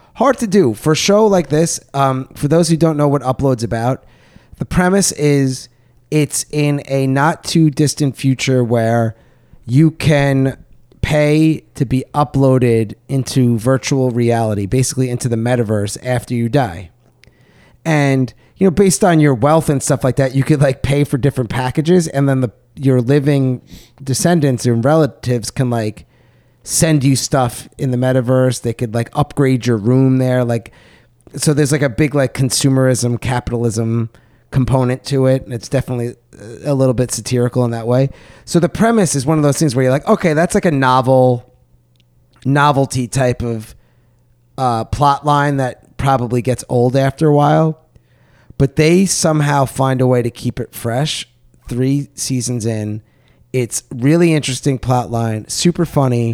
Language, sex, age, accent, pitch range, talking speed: English, male, 30-49, American, 120-145 Hz, 165 wpm